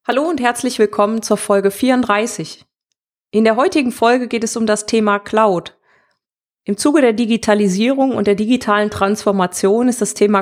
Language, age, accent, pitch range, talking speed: German, 30-49, German, 200-240 Hz, 160 wpm